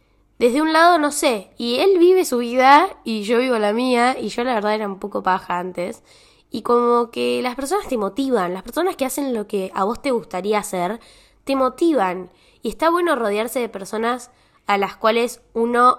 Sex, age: female, 10-29